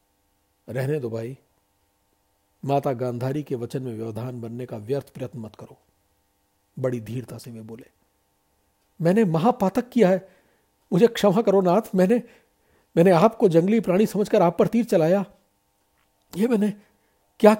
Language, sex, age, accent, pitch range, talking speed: Hindi, male, 50-69, native, 100-155 Hz, 140 wpm